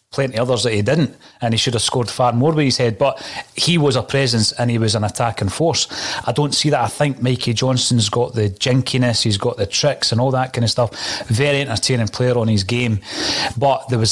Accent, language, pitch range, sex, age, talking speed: British, English, 110-135 Hz, male, 30-49, 240 wpm